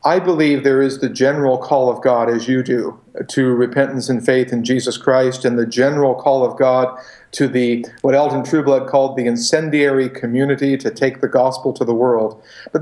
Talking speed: 195 wpm